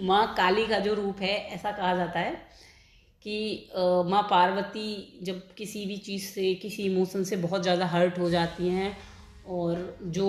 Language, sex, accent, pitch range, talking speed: Hindi, female, native, 180-220 Hz, 170 wpm